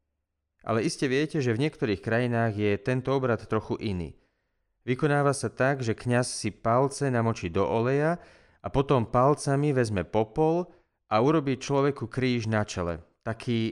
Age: 30-49